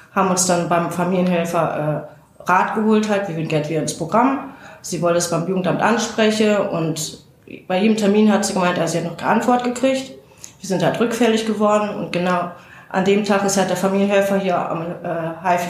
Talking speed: 210 wpm